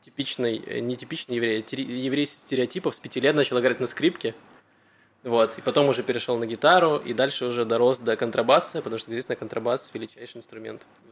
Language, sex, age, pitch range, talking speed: Russian, male, 20-39, 120-135 Hz, 185 wpm